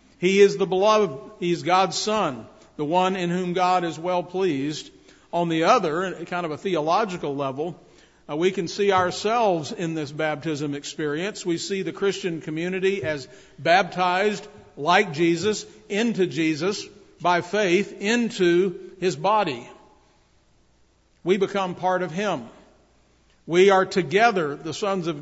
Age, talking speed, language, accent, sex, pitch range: 50-69, 140 wpm, English, American, male, 155-195 Hz